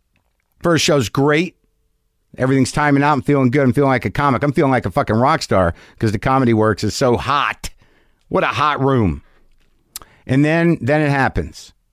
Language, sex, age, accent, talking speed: English, male, 50-69, American, 185 wpm